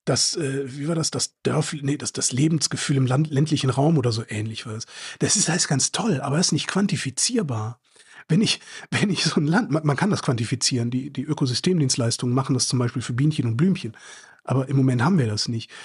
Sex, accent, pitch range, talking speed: male, German, 130-165 Hz, 230 wpm